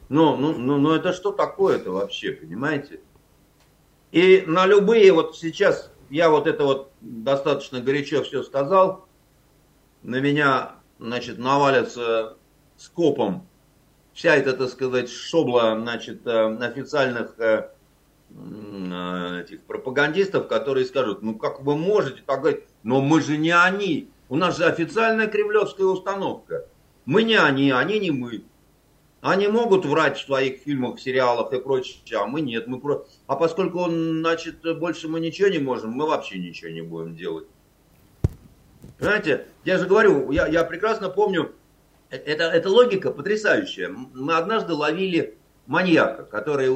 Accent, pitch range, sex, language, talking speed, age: native, 125-195 Hz, male, Russian, 135 wpm, 50-69